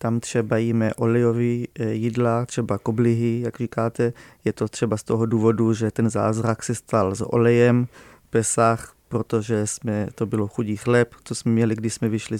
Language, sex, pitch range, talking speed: Czech, male, 115-125 Hz, 170 wpm